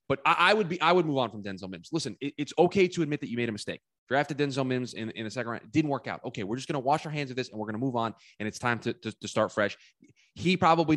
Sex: male